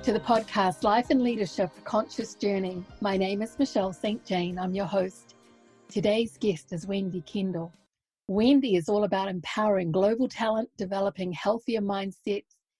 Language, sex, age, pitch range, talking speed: English, female, 50-69, 185-215 Hz, 150 wpm